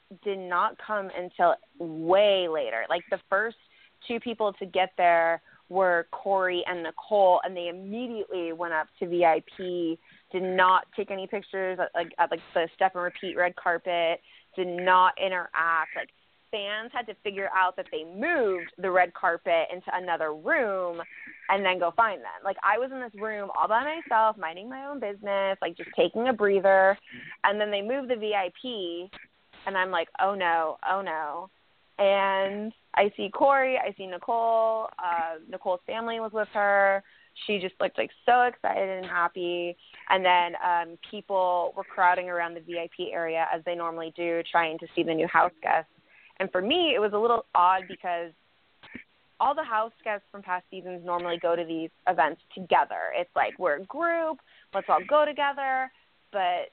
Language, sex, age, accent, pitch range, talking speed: English, female, 20-39, American, 175-210 Hz, 175 wpm